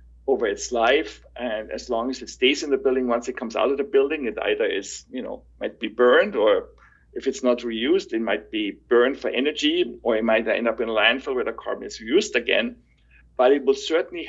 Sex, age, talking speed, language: male, 60-79, 235 wpm, English